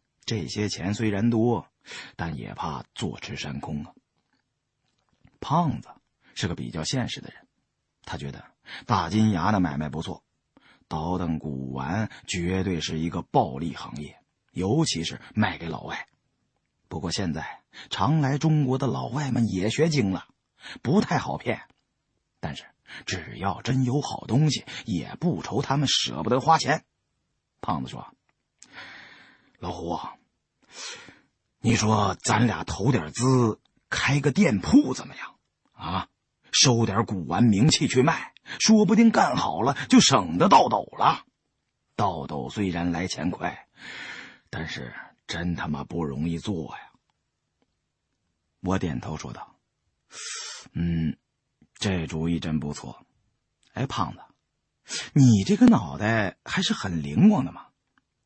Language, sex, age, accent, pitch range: Czech, male, 30-49, Chinese, 85-125 Hz